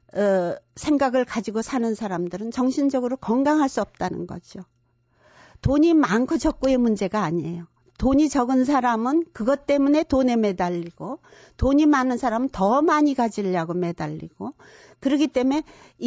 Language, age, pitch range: Korean, 60-79, 190-260 Hz